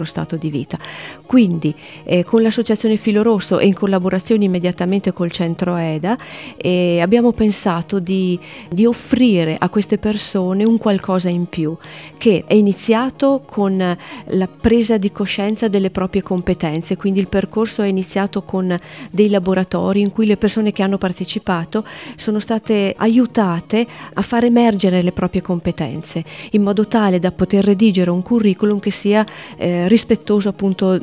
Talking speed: 145 wpm